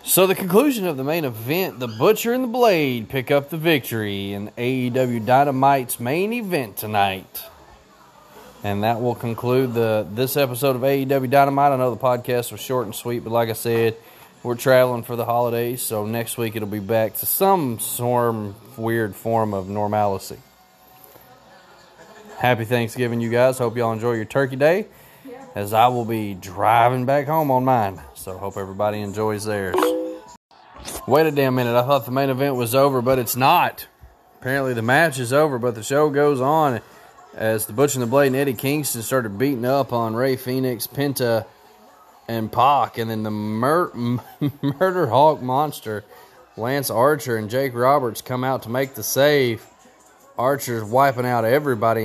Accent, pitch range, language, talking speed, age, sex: American, 115-140 Hz, English, 175 wpm, 20-39, male